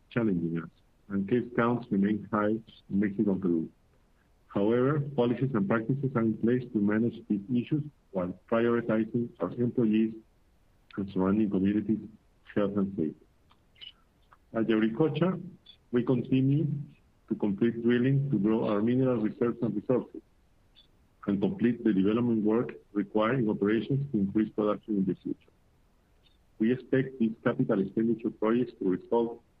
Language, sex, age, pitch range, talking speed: English, male, 50-69, 100-125 Hz, 135 wpm